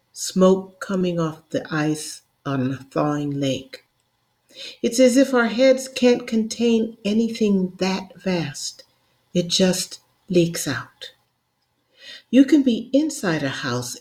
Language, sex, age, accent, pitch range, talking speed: English, female, 50-69, American, 165-230 Hz, 125 wpm